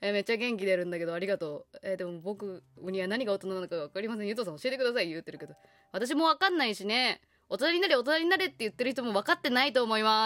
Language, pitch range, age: Japanese, 180-260 Hz, 20-39